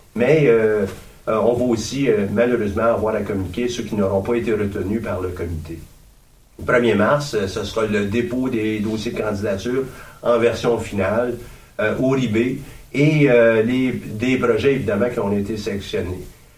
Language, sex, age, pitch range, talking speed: French, male, 50-69, 100-120 Hz, 175 wpm